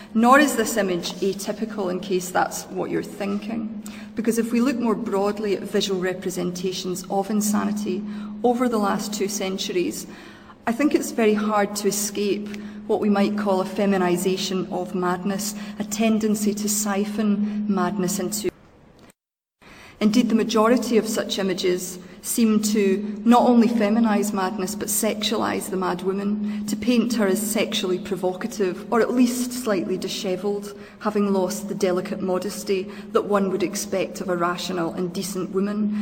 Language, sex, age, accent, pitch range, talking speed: English, female, 30-49, British, 185-210 Hz, 150 wpm